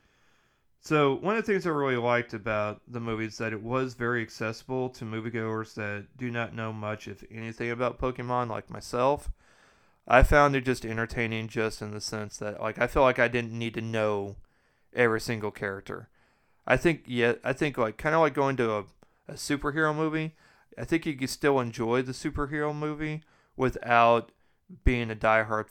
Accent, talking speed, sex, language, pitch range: American, 185 wpm, male, English, 105-125 Hz